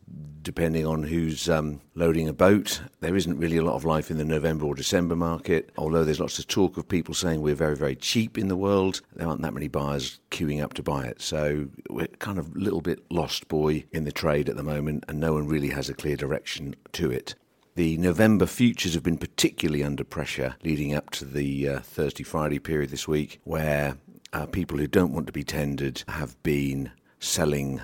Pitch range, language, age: 70-85 Hz, English, 50-69